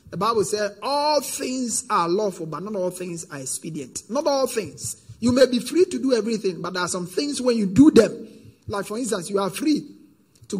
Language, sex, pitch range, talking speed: English, male, 175-240 Hz, 220 wpm